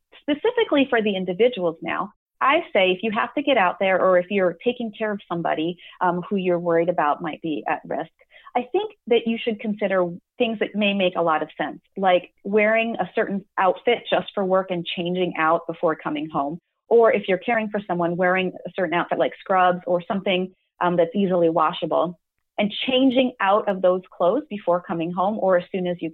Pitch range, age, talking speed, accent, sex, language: 175-225 Hz, 30-49, 205 wpm, American, female, English